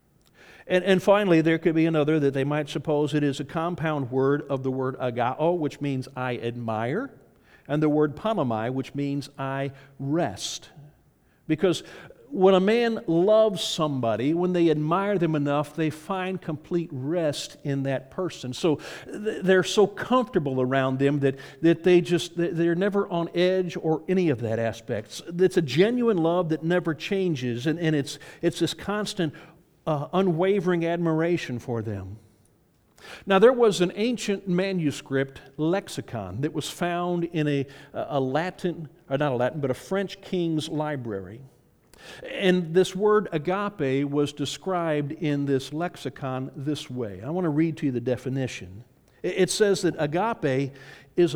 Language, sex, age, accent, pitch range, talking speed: English, male, 50-69, American, 135-180 Hz, 160 wpm